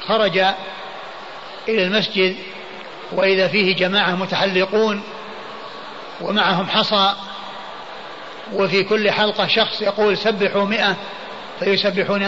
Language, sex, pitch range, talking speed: Arabic, male, 195-230 Hz, 85 wpm